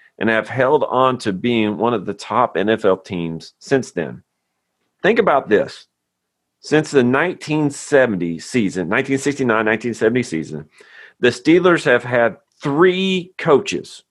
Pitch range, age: 90-130 Hz, 40-59